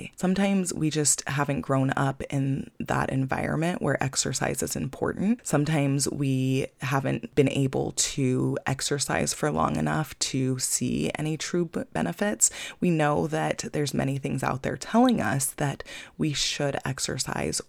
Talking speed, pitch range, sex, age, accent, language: 145 wpm, 135-170 Hz, female, 20-39, American, English